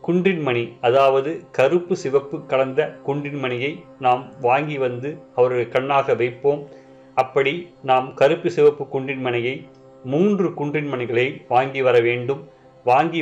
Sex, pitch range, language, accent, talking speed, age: male, 130-150 Hz, Tamil, native, 105 wpm, 30-49